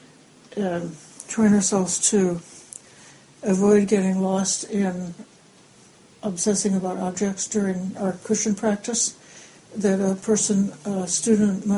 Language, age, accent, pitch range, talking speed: English, 60-79, American, 195-225 Hz, 95 wpm